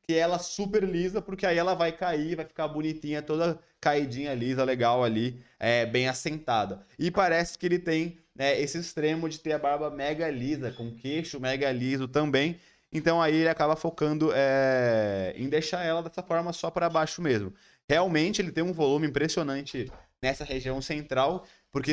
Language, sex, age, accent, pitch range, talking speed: Portuguese, male, 20-39, Brazilian, 130-170 Hz, 170 wpm